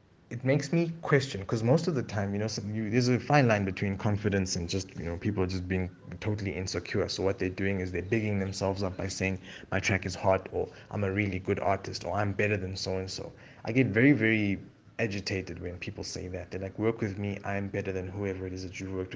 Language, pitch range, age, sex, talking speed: English, 95-110 Hz, 20-39, male, 235 wpm